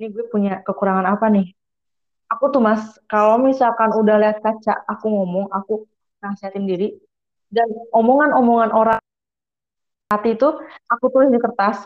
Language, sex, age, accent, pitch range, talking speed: Indonesian, female, 20-39, native, 190-235 Hz, 140 wpm